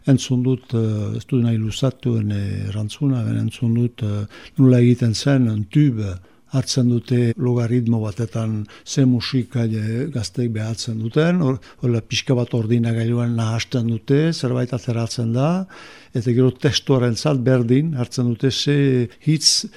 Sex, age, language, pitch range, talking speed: male, 60-79, French, 115-140 Hz, 135 wpm